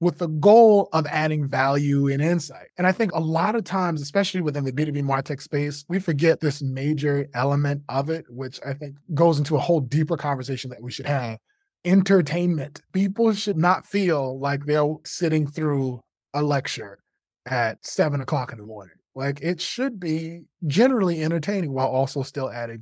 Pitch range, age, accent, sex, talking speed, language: 130-170 Hz, 20-39, American, male, 180 wpm, English